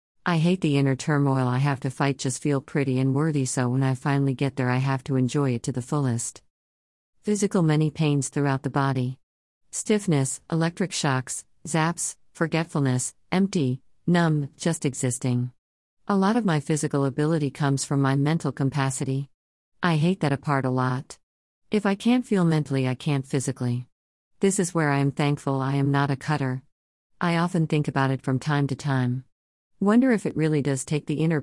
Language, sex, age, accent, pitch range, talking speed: English, female, 50-69, American, 130-155 Hz, 185 wpm